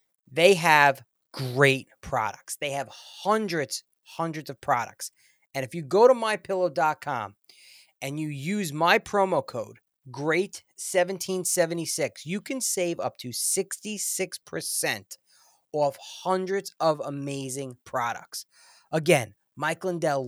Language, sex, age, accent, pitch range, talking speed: English, male, 30-49, American, 135-190 Hz, 110 wpm